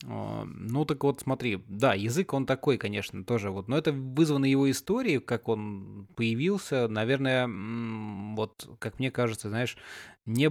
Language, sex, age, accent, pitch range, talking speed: Russian, male, 20-39, native, 105-130 Hz, 150 wpm